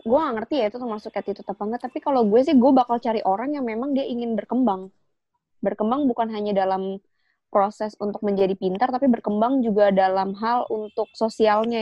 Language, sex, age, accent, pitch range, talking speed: Indonesian, female, 20-39, native, 195-245 Hz, 185 wpm